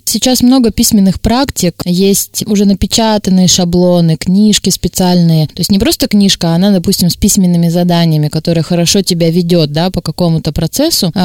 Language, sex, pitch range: Russian, female, 170-205 Hz